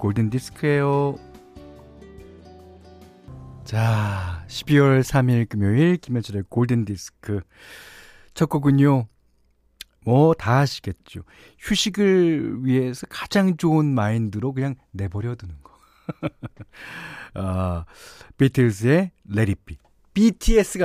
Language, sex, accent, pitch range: Korean, male, native, 100-160 Hz